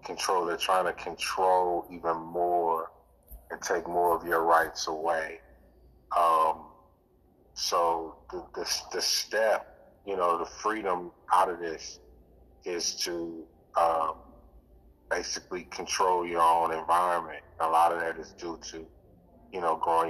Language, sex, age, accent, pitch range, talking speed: English, male, 30-49, American, 80-85 Hz, 135 wpm